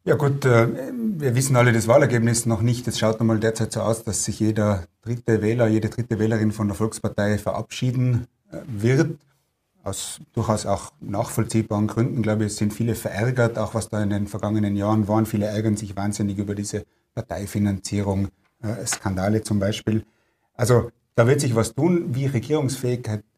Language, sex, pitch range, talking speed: German, male, 105-120 Hz, 170 wpm